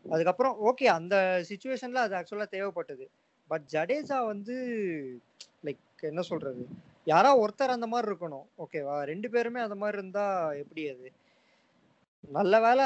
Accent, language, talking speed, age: Indian, English, 115 wpm, 20-39